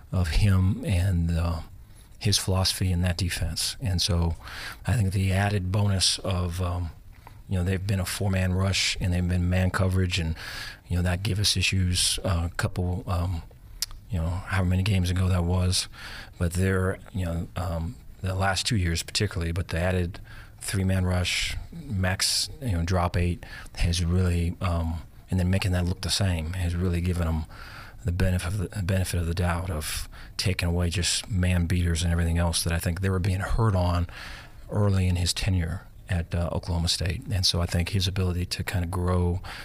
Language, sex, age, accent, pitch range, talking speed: English, male, 40-59, American, 90-100 Hz, 190 wpm